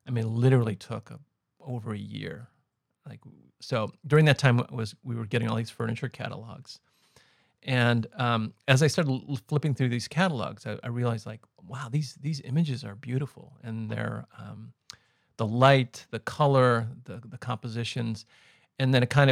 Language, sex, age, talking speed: English, male, 40-59, 170 wpm